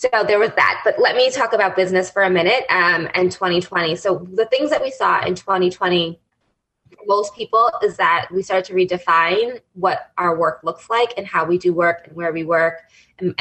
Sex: female